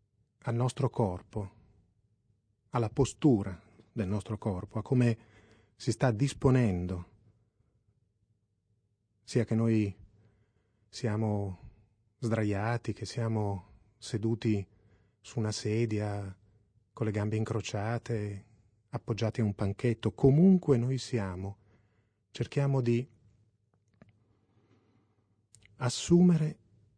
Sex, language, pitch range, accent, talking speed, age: male, Italian, 105-120 Hz, native, 85 wpm, 30-49